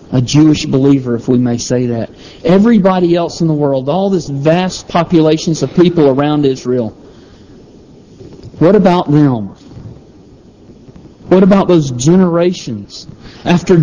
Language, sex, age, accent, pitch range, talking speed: English, male, 50-69, American, 130-175 Hz, 125 wpm